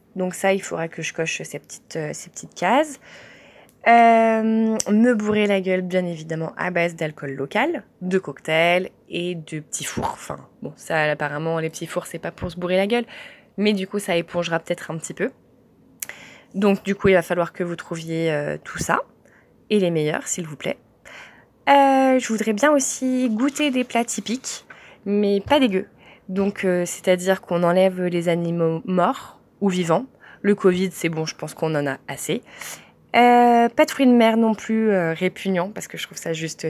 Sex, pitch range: female, 170-220 Hz